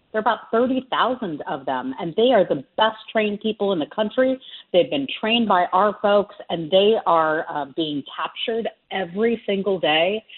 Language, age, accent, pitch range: English, 50-69, American, 165-210 Hz